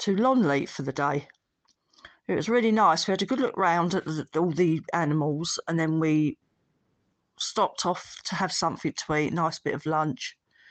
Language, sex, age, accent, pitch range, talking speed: English, female, 40-59, British, 160-200 Hz, 185 wpm